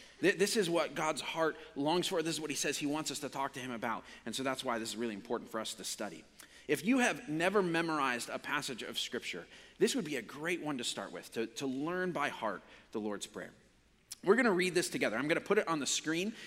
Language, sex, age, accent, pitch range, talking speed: English, male, 30-49, American, 125-175 Hz, 260 wpm